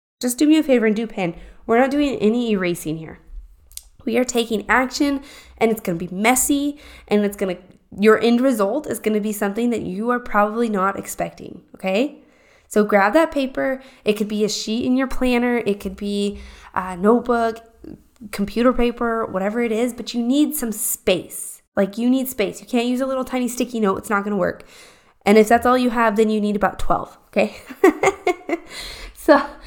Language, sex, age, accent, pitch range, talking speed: English, female, 20-39, American, 205-260 Hz, 200 wpm